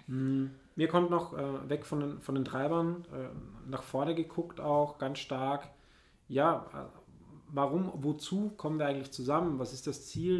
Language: German